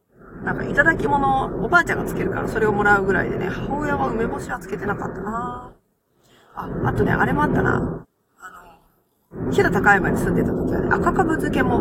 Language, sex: Japanese, female